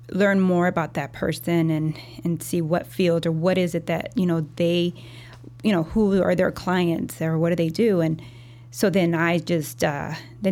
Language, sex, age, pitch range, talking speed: English, female, 20-39, 155-185 Hz, 205 wpm